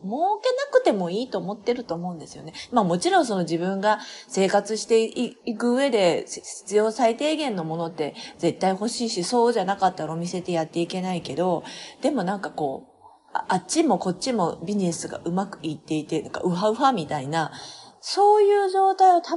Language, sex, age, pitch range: Japanese, female, 40-59, 170-250 Hz